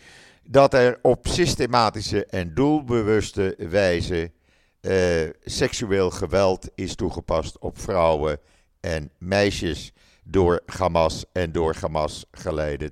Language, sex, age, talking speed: Dutch, male, 50-69, 100 wpm